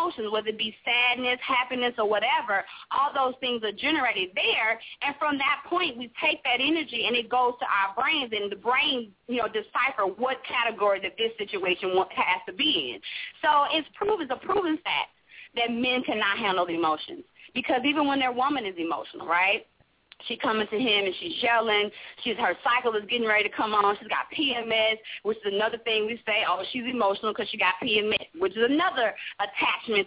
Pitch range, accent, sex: 215-295 Hz, American, female